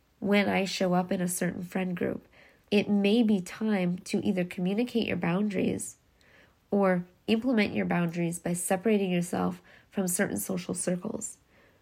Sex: female